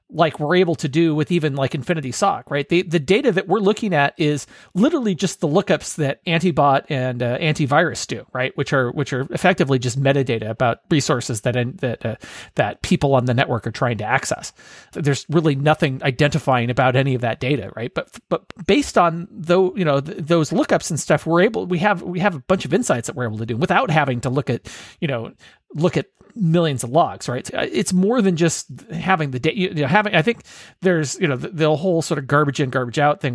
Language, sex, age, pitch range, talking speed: English, male, 30-49, 130-170 Hz, 230 wpm